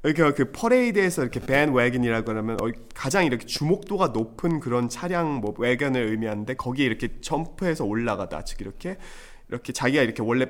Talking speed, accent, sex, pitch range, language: 145 wpm, Korean, male, 115-160 Hz, English